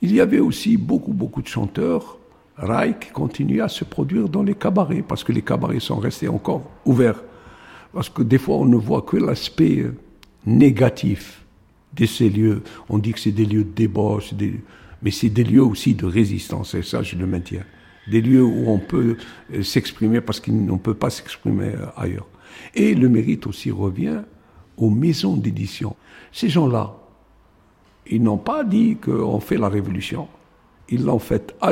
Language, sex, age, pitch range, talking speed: French, male, 60-79, 105-130 Hz, 175 wpm